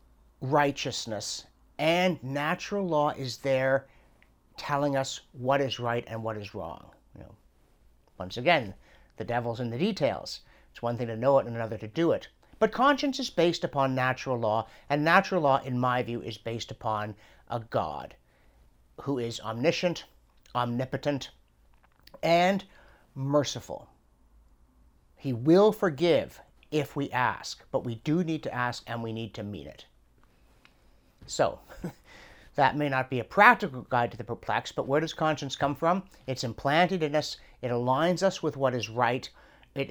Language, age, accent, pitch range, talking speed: English, 50-69, American, 120-155 Hz, 160 wpm